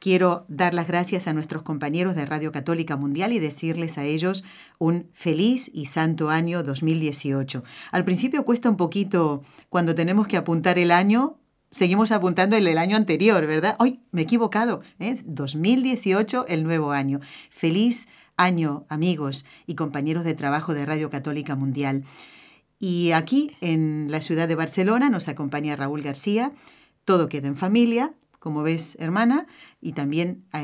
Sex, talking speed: female, 160 wpm